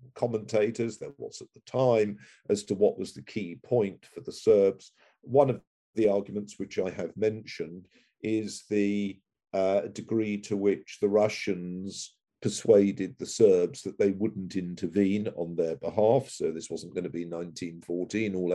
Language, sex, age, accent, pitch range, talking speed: English, male, 50-69, British, 95-110 Hz, 160 wpm